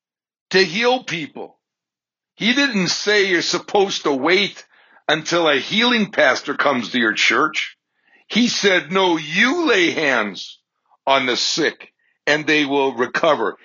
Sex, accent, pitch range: male, American, 155-240 Hz